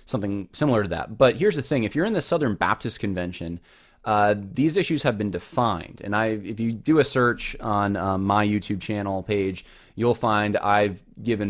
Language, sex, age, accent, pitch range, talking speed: English, male, 20-39, American, 100-120 Hz, 200 wpm